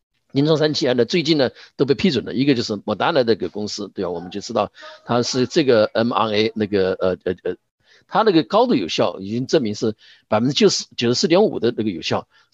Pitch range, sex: 110-160 Hz, male